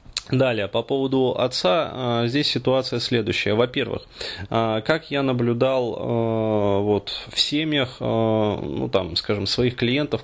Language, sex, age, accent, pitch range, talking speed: Russian, male, 20-39, native, 110-125 Hz, 110 wpm